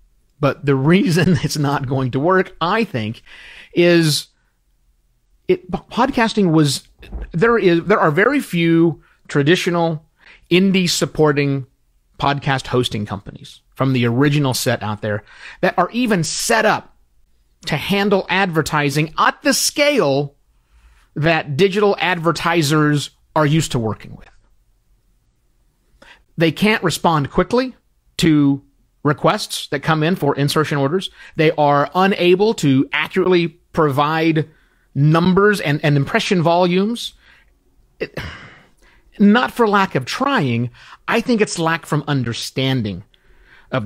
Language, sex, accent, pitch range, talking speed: English, male, American, 135-185 Hz, 115 wpm